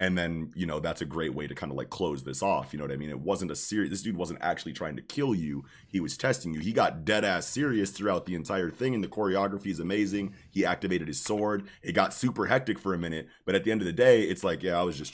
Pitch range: 85-105 Hz